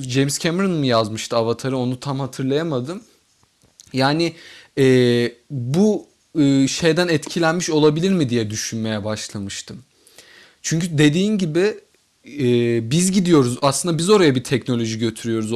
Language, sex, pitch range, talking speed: Turkish, male, 120-165 Hz, 120 wpm